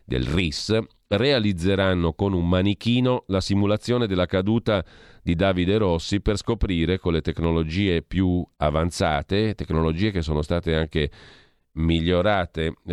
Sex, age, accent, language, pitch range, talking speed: male, 40-59, native, Italian, 80-105 Hz, 120 wpm